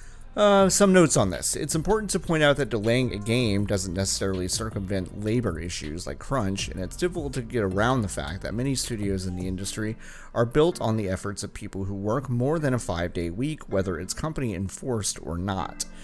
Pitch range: 90-125 Hz